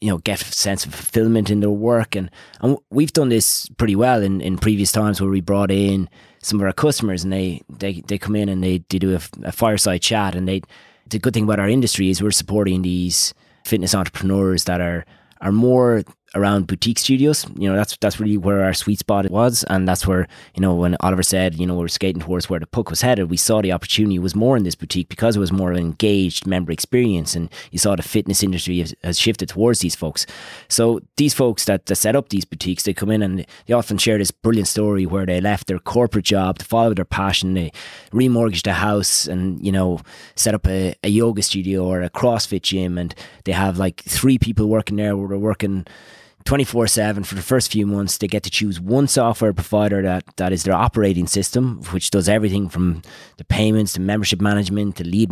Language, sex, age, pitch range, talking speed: English, male, 20-39, 95-110 Hz, 230 wpm